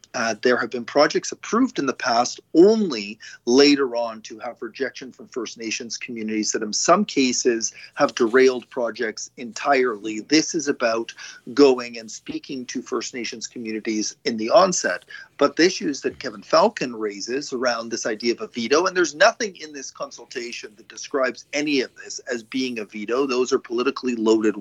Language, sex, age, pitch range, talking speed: English, male, 40-59, 115-160 Hz, 175 wpm